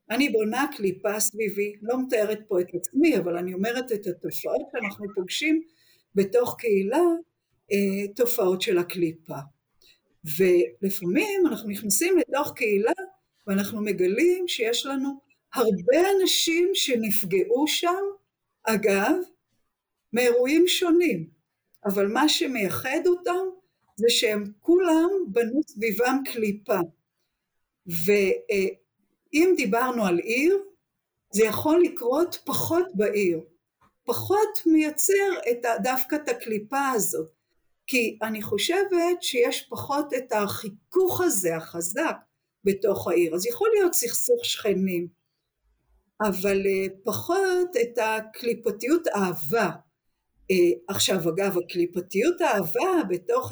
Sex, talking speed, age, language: female, 100 wpm, 50-69, Hebrew